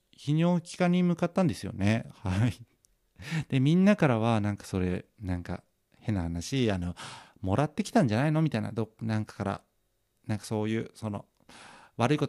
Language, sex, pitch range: Japanese, male, 100-155 Hz